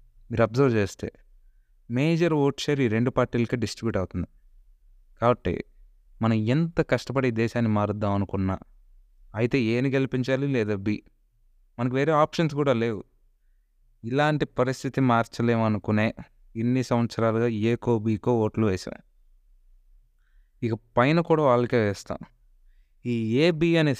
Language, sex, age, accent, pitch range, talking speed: Telugu, male, 20-39, native, 110-135 Hz, 120 wpm